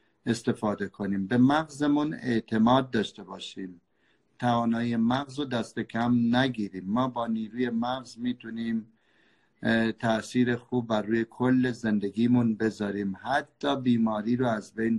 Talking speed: 120 wpm